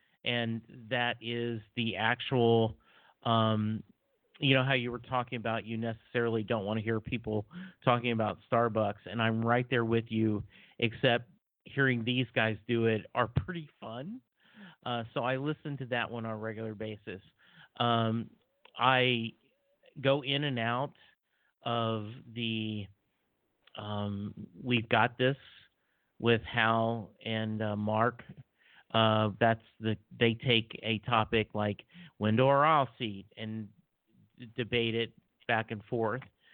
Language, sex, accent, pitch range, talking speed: English, male, American, 110-125 Hz, 140 wpm